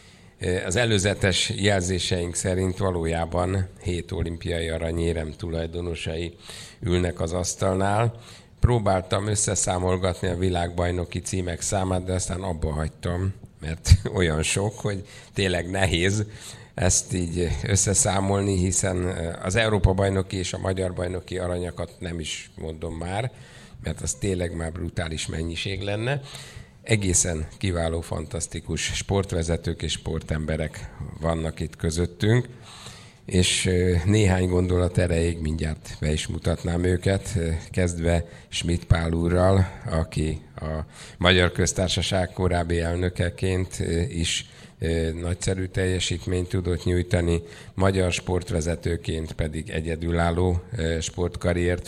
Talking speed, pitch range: 105 wpm, 85-100 Hz